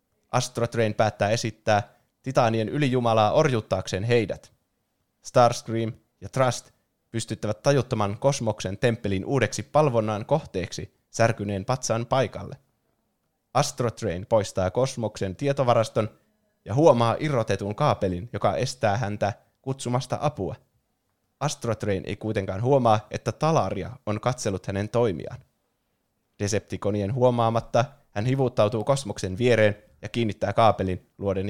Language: Finnish